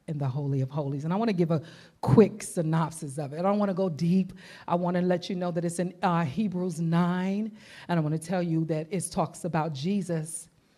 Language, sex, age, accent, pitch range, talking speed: English, female, 40-59, American, 155-195 Hz, 245 wpm